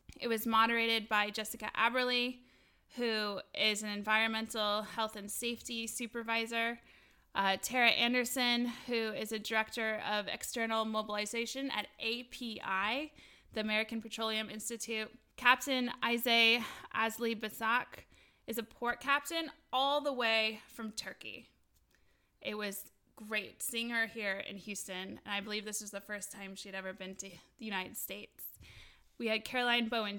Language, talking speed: English, 140 wpm